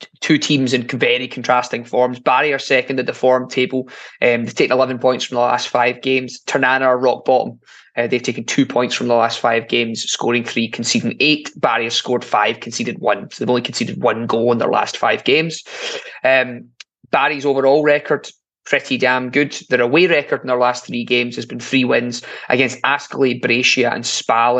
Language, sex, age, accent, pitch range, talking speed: English, male, 20-39, British, 125-140 Hz, 200 wpm